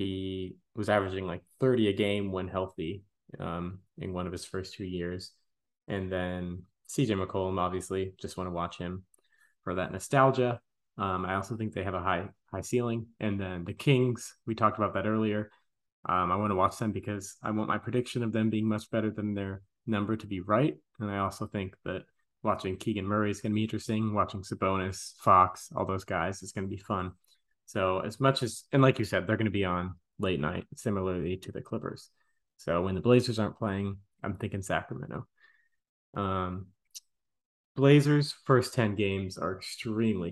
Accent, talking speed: American, 195 wpm